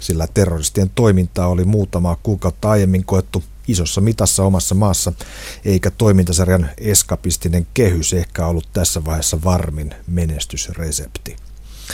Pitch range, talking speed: 85-100 Hz, 110 wpm